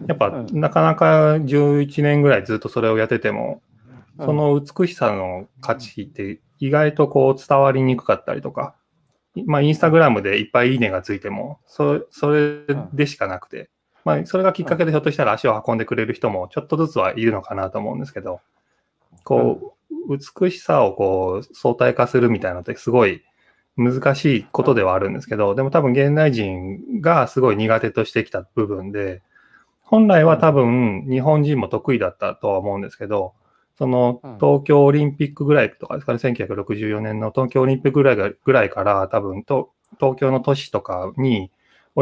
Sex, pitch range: male, 115-150 Hz